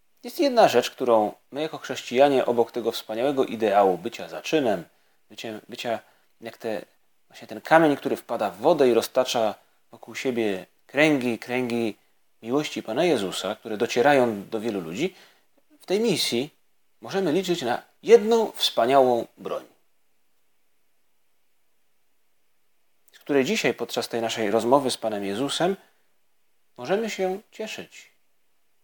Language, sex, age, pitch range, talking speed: Polish, male, 30-49, 115-175 Hz, 120 wpm